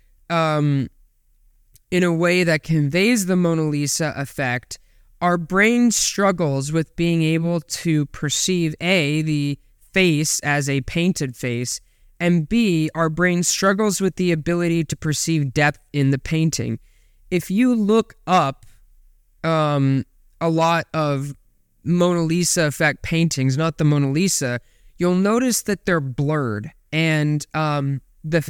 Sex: male